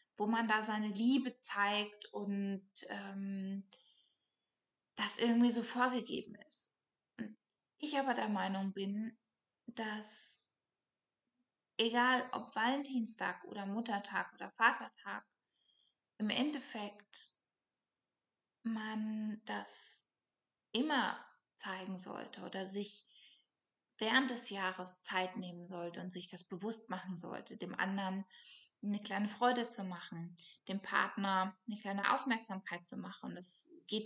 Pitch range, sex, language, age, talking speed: 195-230 Hz, female, German, 20-39, 115 wpm